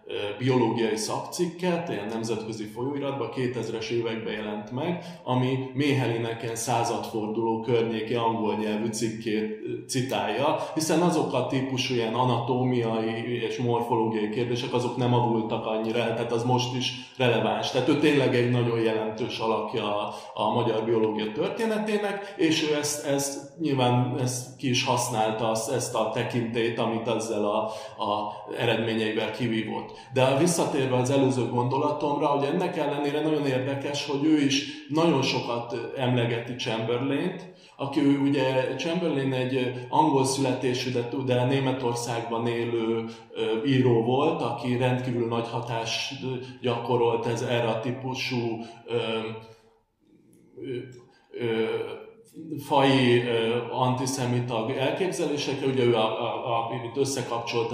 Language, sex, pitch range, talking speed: Hungarian, male, 115-135 Hz, 115 wpm